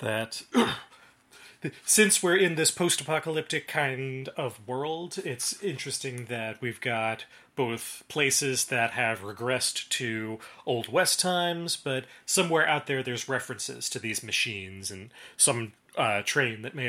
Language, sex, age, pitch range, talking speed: English, male, 30-49, 115-145 Hz, 135 wpm